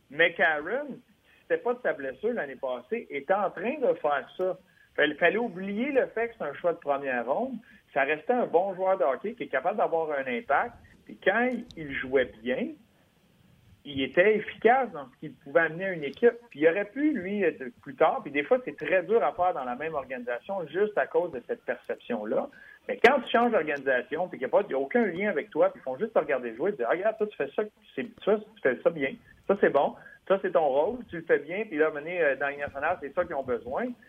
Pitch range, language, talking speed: 145-230 Hz, French, 245 wpm